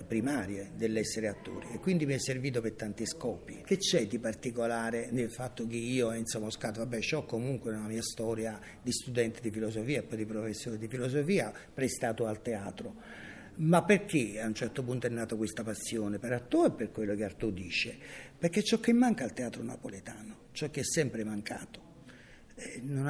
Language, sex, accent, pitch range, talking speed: Italian, male, native, 110-150 Hz, 185 wpm